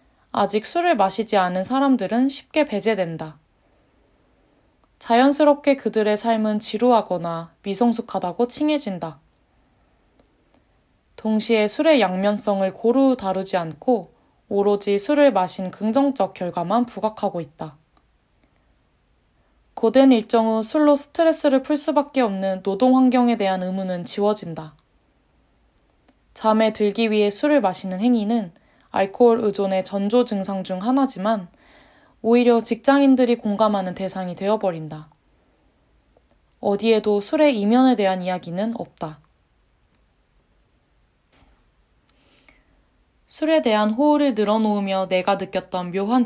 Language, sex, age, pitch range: Korean, female, 20-39, 190-245 Hz